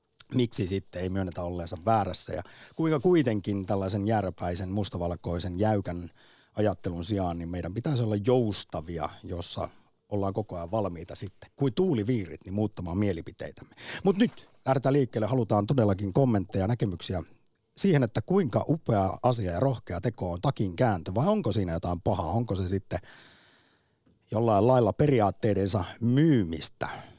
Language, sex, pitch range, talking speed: Finnish, male, 95-125 Hz, 140 wpm